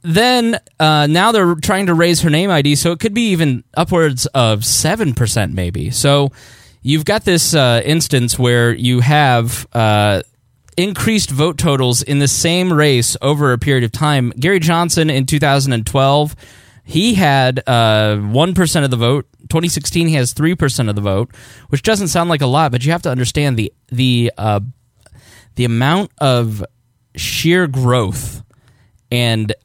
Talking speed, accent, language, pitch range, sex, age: 160 wpm, American, English, 115-155 Hz, male, 10-29